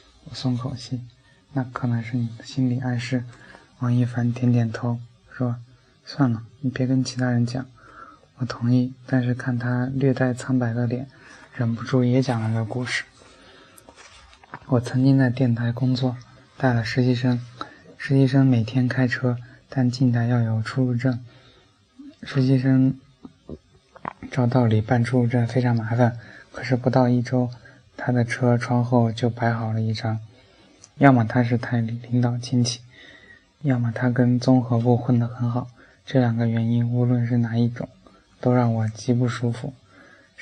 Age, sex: 20-39, male